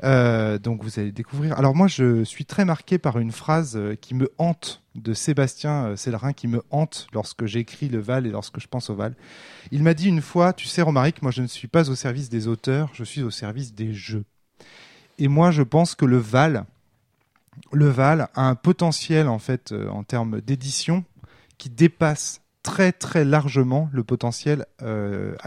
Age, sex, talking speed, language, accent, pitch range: 20-39, male, 190 wpm, English, French, 115-150 Hz